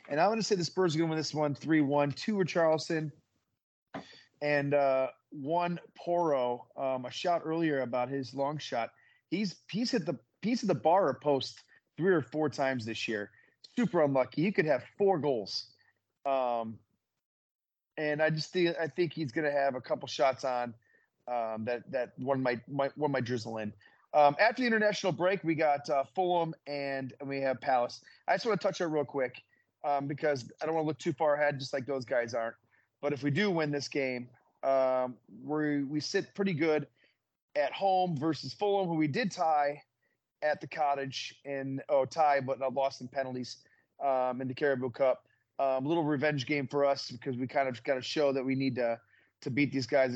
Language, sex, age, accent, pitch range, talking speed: English, male, 30-49, American, 130-160 Hz, 205 wpm